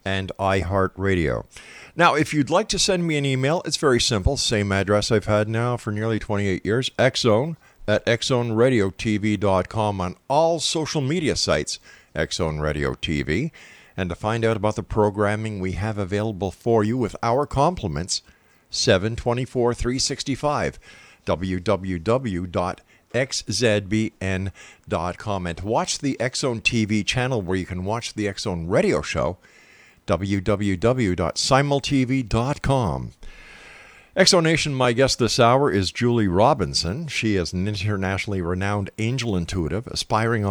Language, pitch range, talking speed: English, 95-125 Hz, 125 wpm